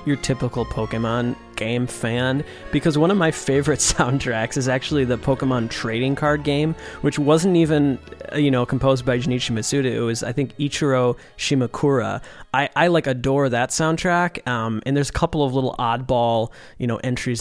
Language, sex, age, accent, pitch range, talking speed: English, male, 20-39, American, 115-150 Hz, 170 wpm